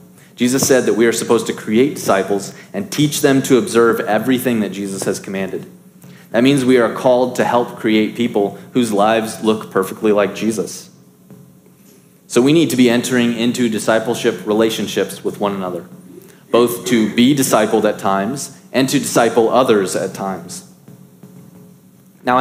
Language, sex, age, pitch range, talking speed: English, male, 30-49, 105-135 Hz, 160 wpm